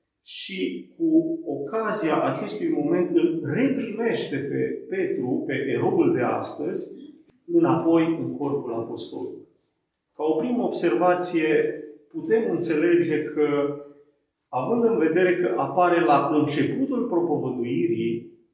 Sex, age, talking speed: male, 40-59, 105 wpm